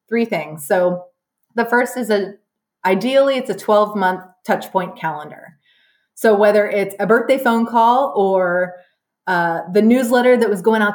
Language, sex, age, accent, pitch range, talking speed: English, female, 30-49, American, 185-230 Hz, 165 wpm